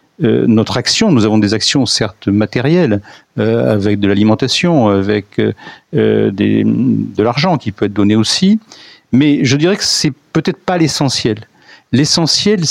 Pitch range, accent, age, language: 110-155 Hz, French, 50-69, French